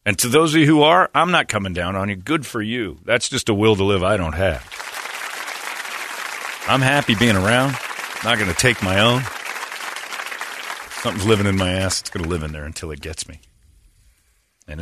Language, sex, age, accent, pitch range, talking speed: English, male, 40-59, American, 85-110 Hz, 210 wpm